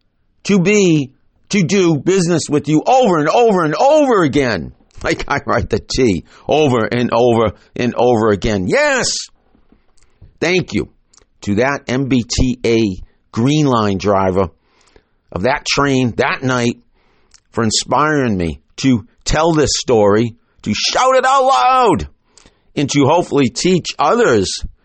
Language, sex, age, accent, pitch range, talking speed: English, male, 50-69, American, 115-165 Hz, 135 wpm